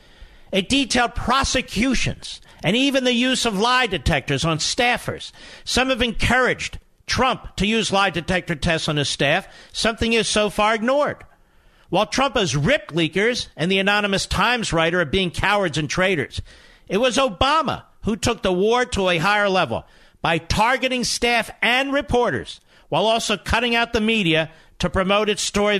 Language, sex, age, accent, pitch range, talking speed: English, male, 50-69, American, 170-235 Hz, 165 wpm